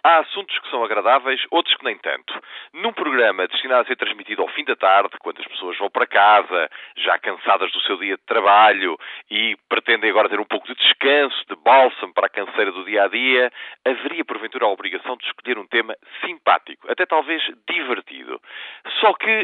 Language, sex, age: Portuguese, male, 40-59